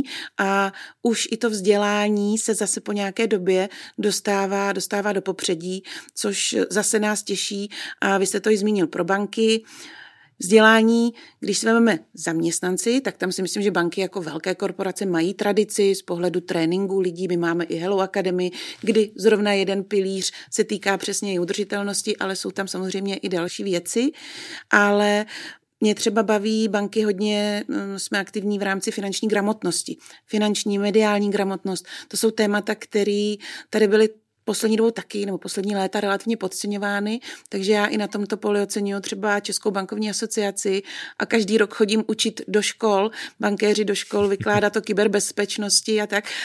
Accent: native